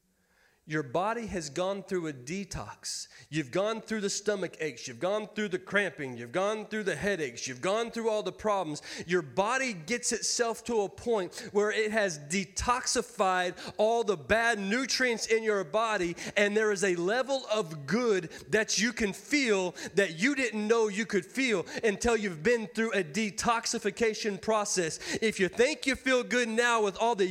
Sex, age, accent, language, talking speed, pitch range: male, 30-49, American, English, 180 wpm, 200-240 Hz